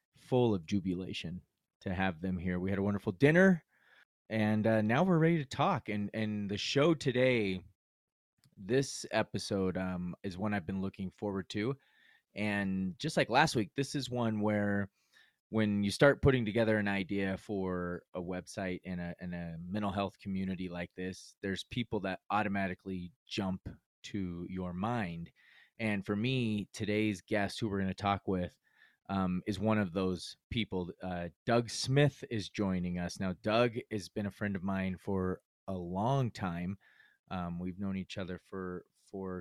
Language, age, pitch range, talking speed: English, 20-39, 95-115 Hz, 170 wpm